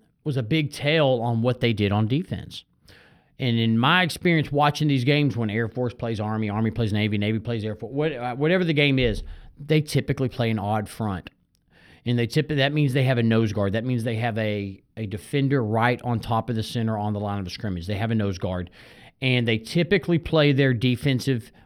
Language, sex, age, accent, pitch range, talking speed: English, male, 40-59, American, 110-150 Hz, 220 wpm